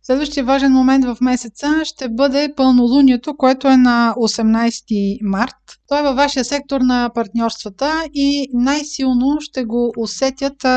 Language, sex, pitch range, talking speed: Bulgarian, female, 225-265 Hz, 135 wpm